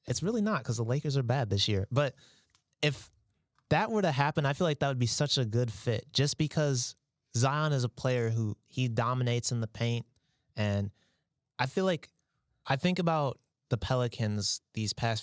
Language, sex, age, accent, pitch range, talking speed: English, male, 20-39, American, 110-130 Hz, 195 wpm